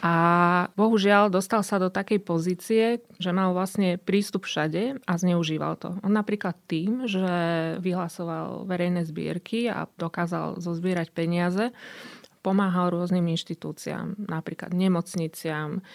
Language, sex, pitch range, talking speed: Slovak, female, 170-200 Hz, 115 wpm